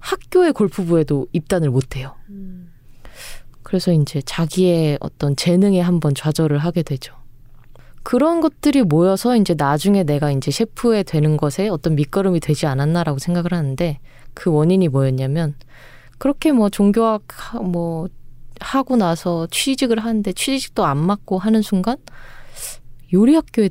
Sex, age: female, 20-39